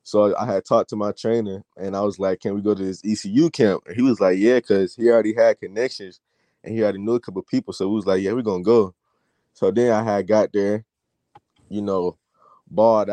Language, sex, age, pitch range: English, male, 20-39, 95-110 Hz